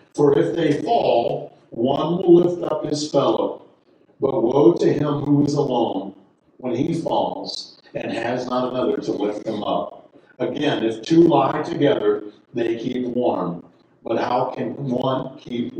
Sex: male